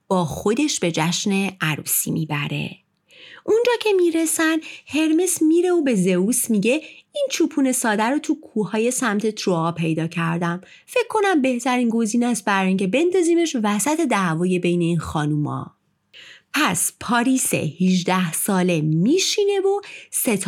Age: 30-49